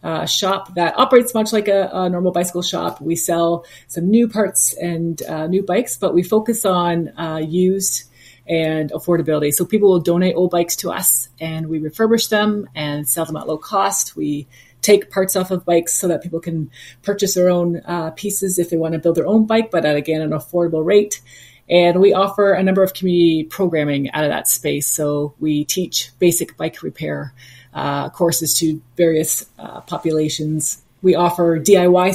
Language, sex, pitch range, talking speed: English, female, 155-185 Hz, 190 wpm